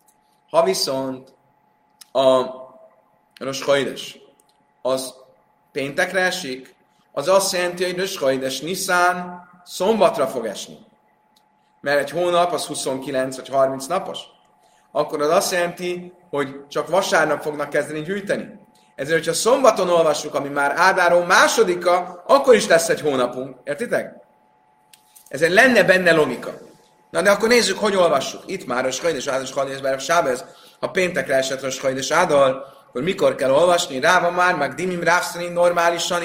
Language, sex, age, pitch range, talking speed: Hungarian, male, 30-49, 135-175 Hz, 130 wpm